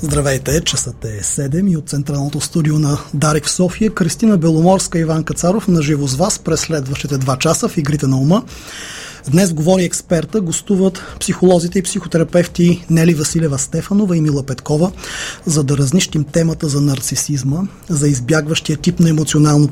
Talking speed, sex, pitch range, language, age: 160 wpm, male, 150-185 Hz, Bulgarian, 30-49